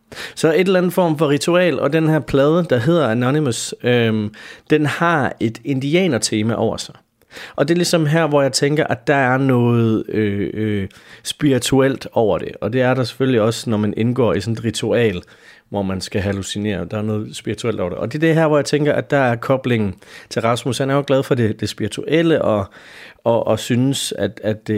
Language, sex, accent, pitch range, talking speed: Danish, male, native, 105-135 Hz, 215 wpm